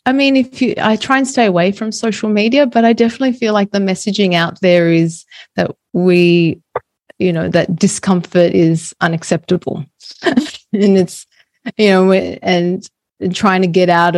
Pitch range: 165-190 Hz